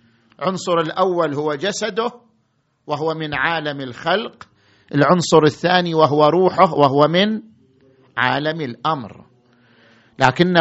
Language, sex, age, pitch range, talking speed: Arabic, male, 50-69, 135-220 Hz, 95 wpm